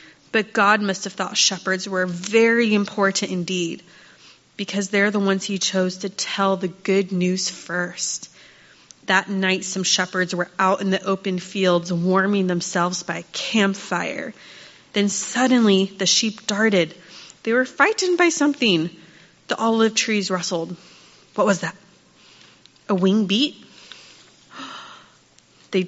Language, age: English, 30-49